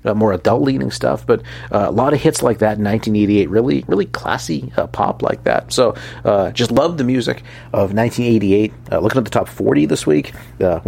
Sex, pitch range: male, 100-115 Hz